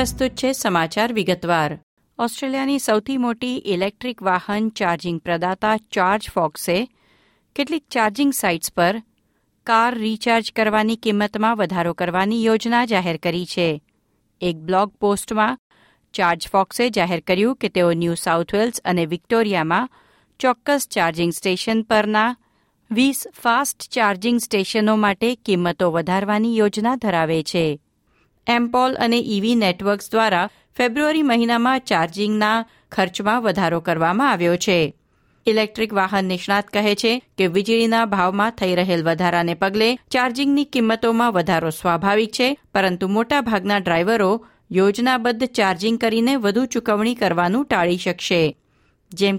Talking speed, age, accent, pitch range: 105 wpm, 50-69, native, 180-235 Hz